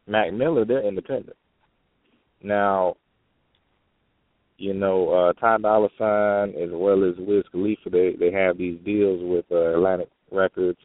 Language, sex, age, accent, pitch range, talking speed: English, male, 20-39, American, 95-115 Hz, 140 wpm